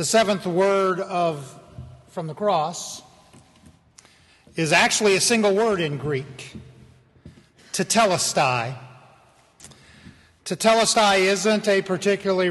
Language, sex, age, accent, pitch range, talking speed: English, male, 50-69, American, 160-205 Hz, 90 wpm